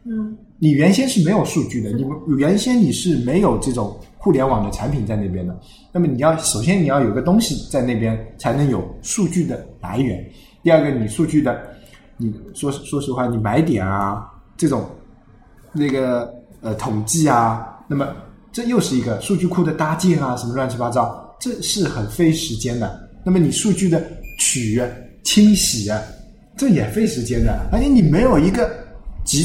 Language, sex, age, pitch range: Chinese, male, 20-39, 115-175 Hz